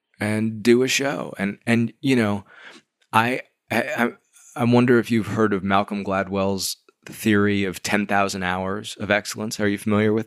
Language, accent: English, American